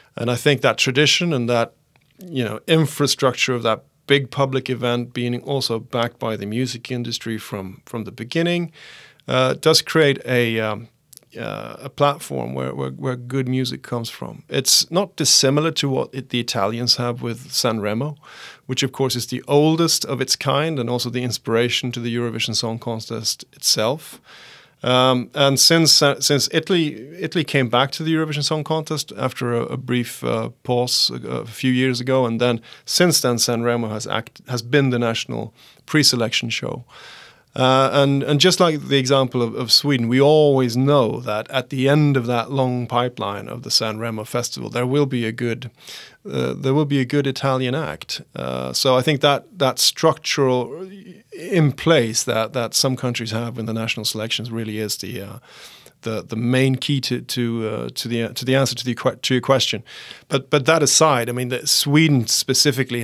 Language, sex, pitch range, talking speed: English, male, 115-140 Hz, 185 wpm